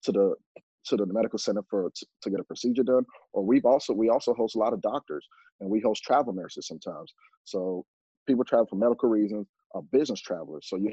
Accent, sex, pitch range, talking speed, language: American, male, 100-135 Hz, 215 wpm, English